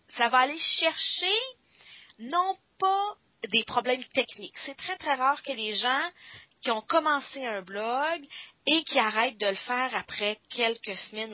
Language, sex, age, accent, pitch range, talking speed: English, female, 30-49, Canadian, 205-295 Hz, 160 wpm